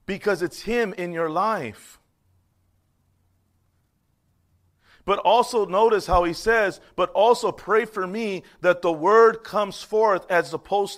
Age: 40-59